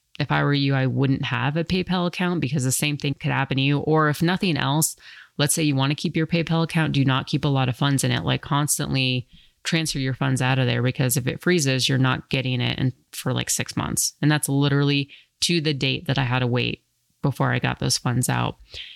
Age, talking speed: 30-49, 245 wpm